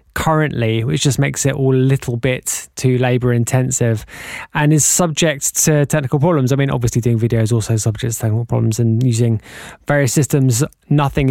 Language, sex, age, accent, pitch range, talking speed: English, male, 20-39, British, 130-165 Hz, 180 wpm